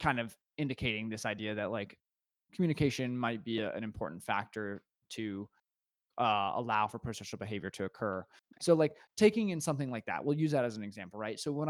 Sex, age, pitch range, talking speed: male, 20-39, 115-150 Hz, 195 wpm